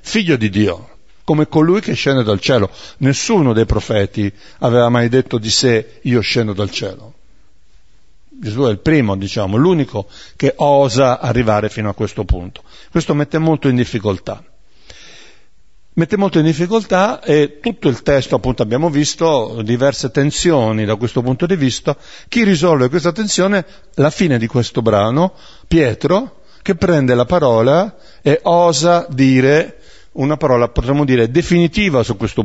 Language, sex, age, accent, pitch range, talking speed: Italian, male, 50-69, native, 110-155 Hz, 150 wpm